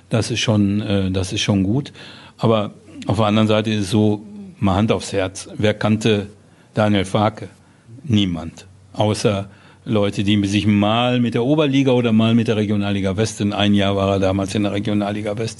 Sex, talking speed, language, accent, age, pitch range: male, 185 wpm, German, German, 60-79, 100-125 Hz